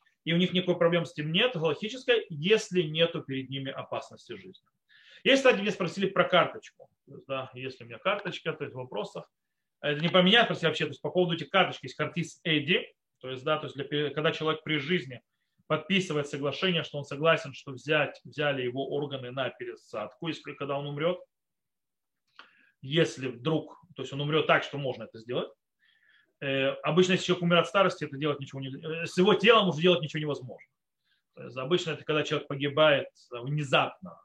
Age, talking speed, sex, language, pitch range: 30-49, 185 wpm, male, Russian, 140-185 Hz